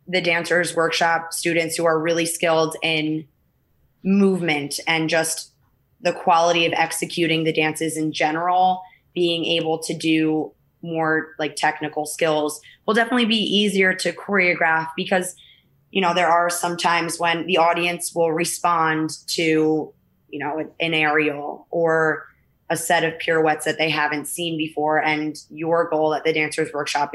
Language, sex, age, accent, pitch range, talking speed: English, female, 20-39, American, 155-170 Hz, 150 wpm